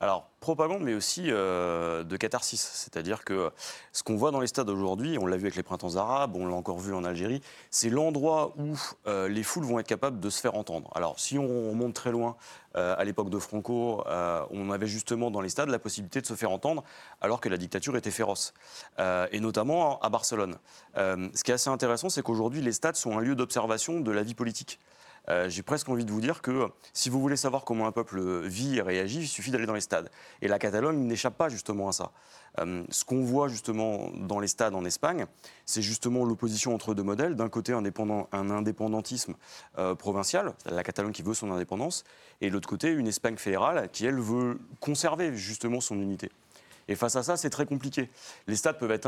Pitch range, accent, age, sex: 100-125 Hz, French, 30-49, male